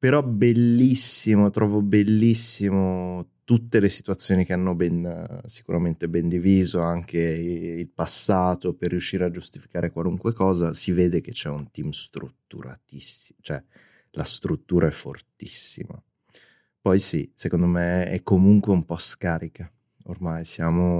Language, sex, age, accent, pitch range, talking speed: Italian, male, 20-39, native, 85-100 Hz, 130 wpm